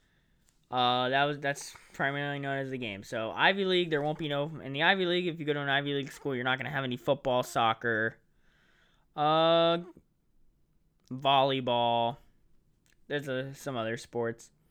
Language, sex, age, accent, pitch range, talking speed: English, male, 10-29, American, 130-160 Hz, 175 wpm